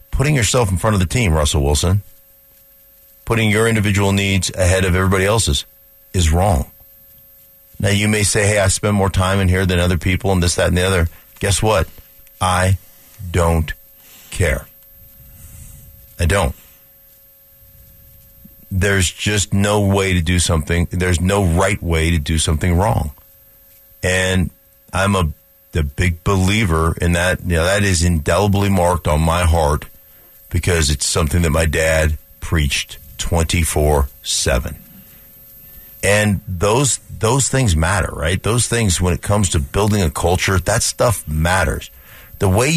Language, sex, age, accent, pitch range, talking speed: English, male, 50-69, American, 85-105 Hz, 150 wpm